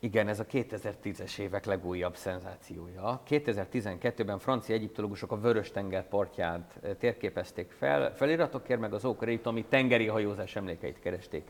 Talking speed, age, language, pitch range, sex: 125 wpm, 50-69, Hungarian, 100-130 Hz, male